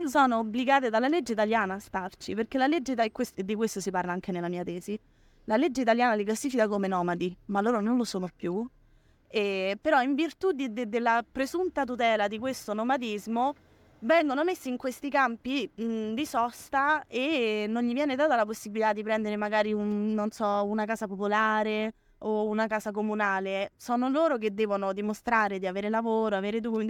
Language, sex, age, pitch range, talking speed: Italian, female, 20-39, 200-255 Hz, 185 wpm